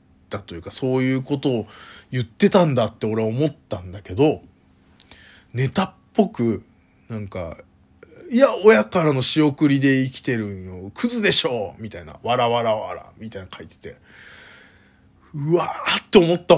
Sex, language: male, Japanese